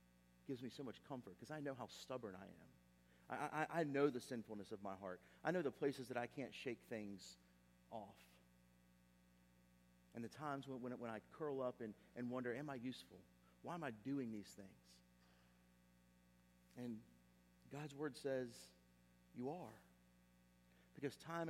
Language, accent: English, American